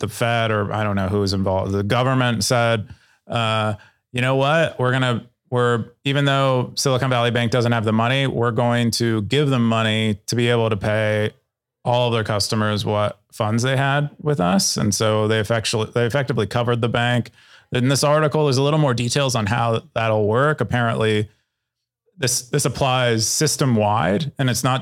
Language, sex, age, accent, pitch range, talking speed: English, male, 30-49, American, 110-130 Hz, 190 wpm